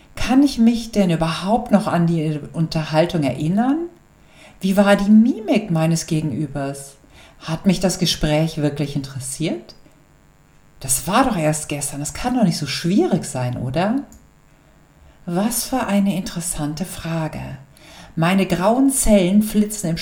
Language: German